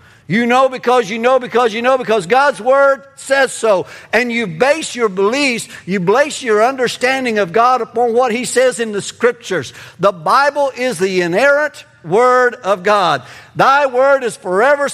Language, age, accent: English, 60-79, American